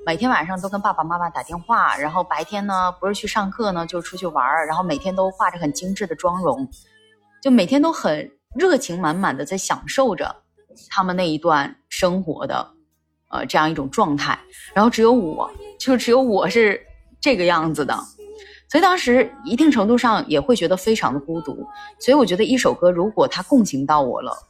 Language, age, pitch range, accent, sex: Chinese, 20-39, 170-245 Hz, native, female